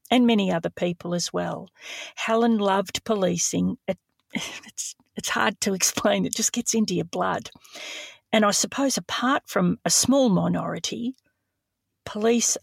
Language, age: English, 50-69